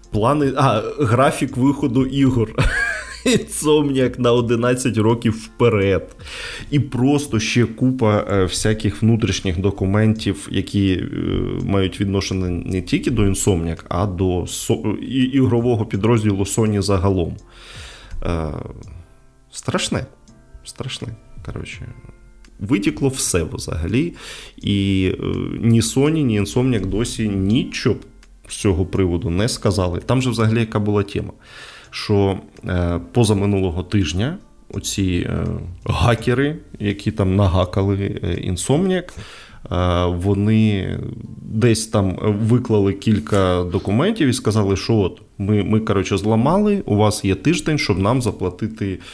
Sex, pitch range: male, 95-125 Hz